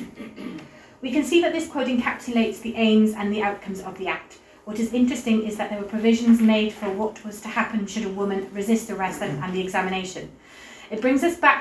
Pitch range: 195-225 Hz